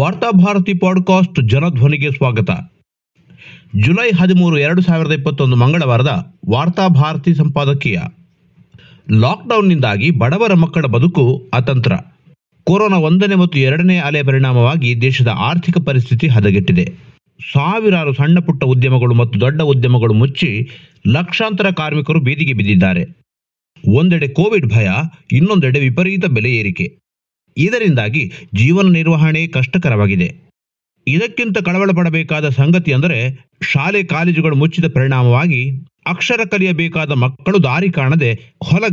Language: Kannada